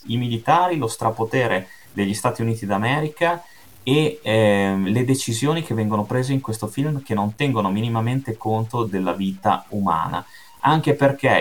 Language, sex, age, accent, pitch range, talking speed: Italian, male, 30-49, native, 100-130 Hz, 145 wpm